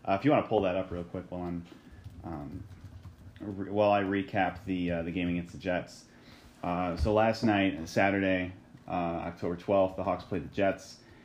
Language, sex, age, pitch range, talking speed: English, male, 30-49, 90-105 Hz, 195 wpm